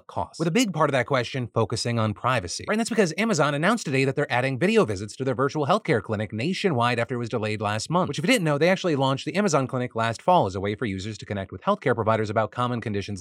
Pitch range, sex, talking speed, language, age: 105-150 Hz, male, 275 wpm, English, 30-49